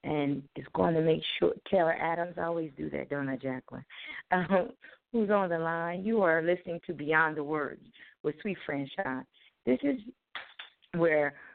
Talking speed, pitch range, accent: 170 wpm, 140-170 Hz, American